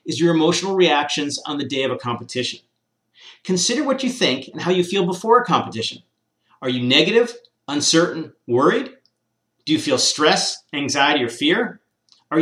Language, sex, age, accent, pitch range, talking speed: English, male, 40-59, American, 145-190 Hz, 165 wpm